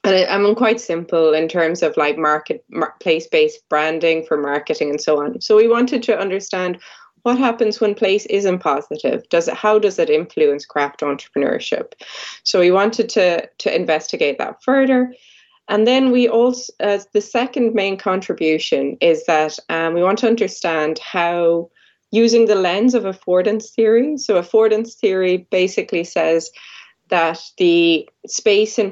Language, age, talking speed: English, 20-39, 160 wpm